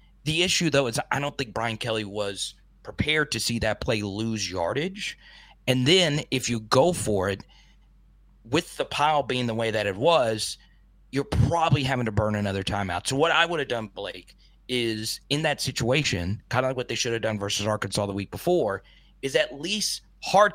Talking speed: 200 wpm